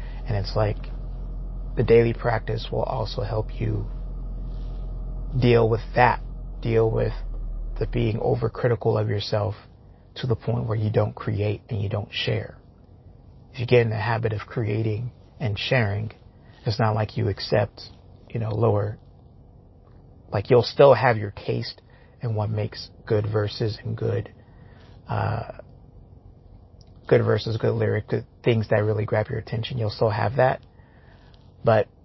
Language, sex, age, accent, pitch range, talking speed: English, male, 30-49, American, 105-120 Hz, 145 wpm